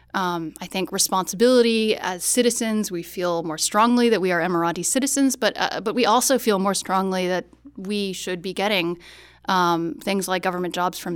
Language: English